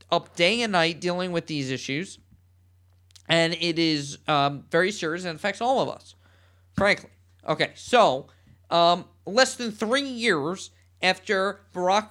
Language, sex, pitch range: English, male, 130-185 Hz